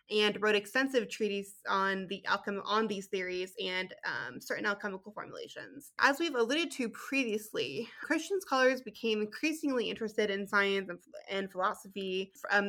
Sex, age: female, 20-39